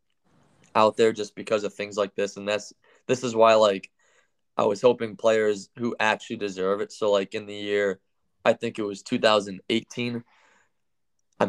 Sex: male